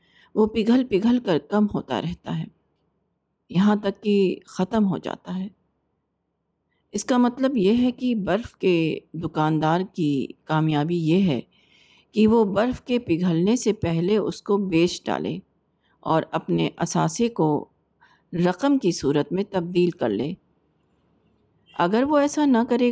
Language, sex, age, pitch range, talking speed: Urdu, female, 50-69, 160-215 Hz, 145 wpm